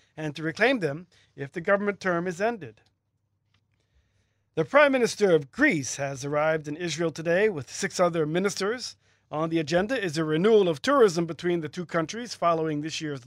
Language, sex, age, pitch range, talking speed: English, male, 40-59, 145-185 Hz, 175 wpm